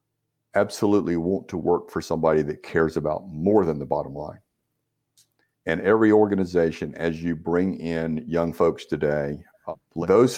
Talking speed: 150 wpm